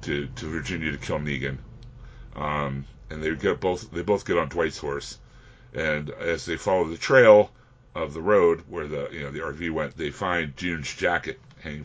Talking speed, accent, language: 190 wpm, American, English